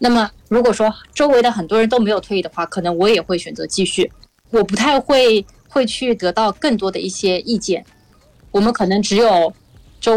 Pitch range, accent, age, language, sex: 180-230 Hz, native, 20-39, Chinese, female